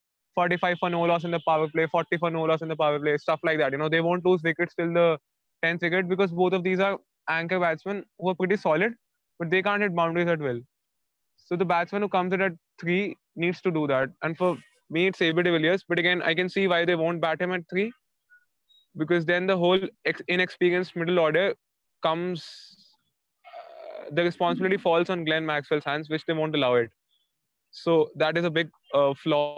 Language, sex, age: English, male, 20-39